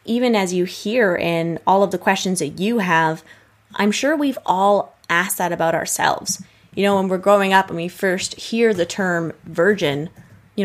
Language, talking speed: English, 190 wpm